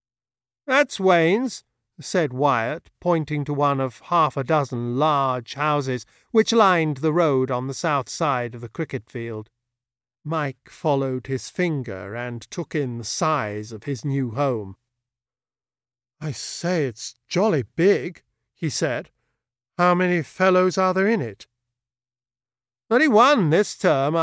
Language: English